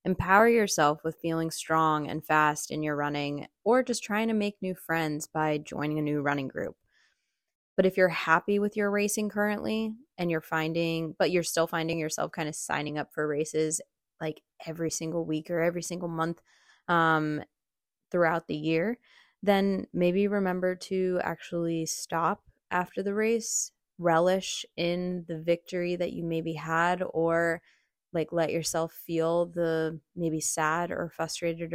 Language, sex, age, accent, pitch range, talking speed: English, female, 20-39, American, 160-180 Hz, 160 wpm